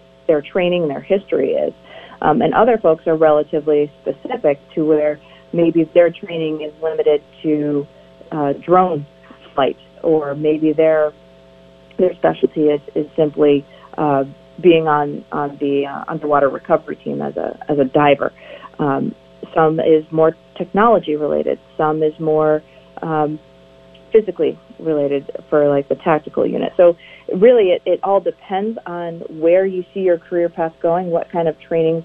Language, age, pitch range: English, 40-59, 150-175 Hz